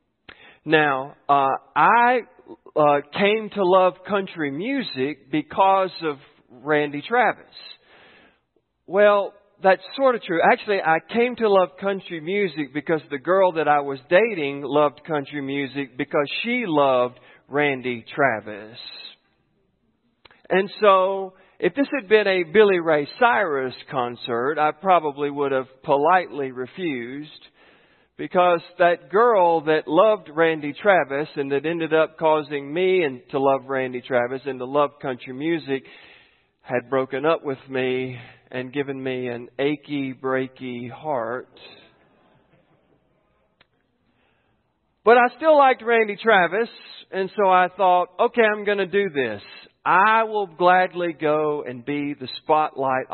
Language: English